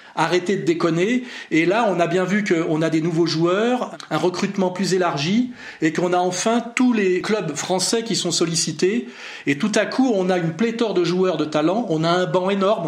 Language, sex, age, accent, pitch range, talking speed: French, male, 40-59, French, 160-210 Hz, 215 wpm